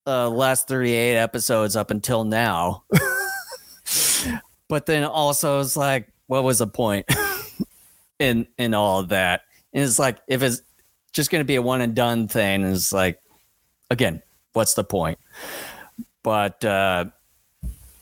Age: 30-49